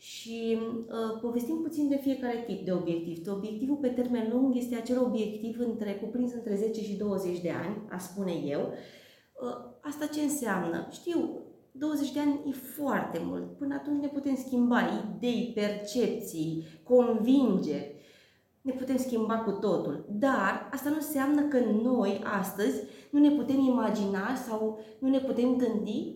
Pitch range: 205-270 Hz